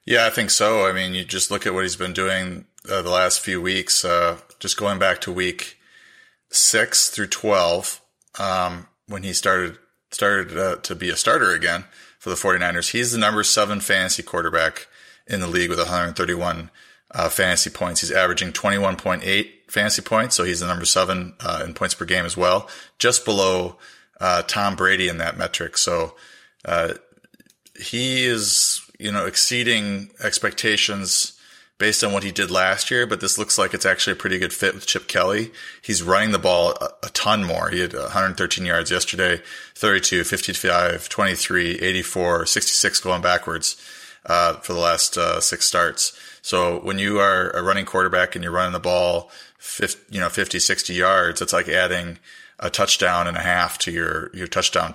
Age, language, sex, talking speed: 30-49, English, male, 180 wpm